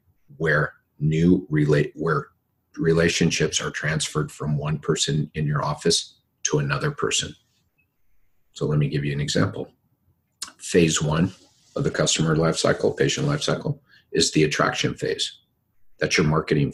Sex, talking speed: male, 145 wpm